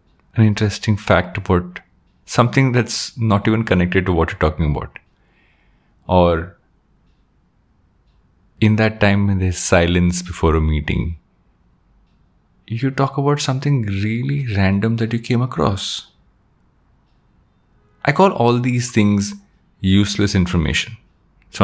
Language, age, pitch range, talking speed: English, 30-49, 85-110 Hz, 115 wpm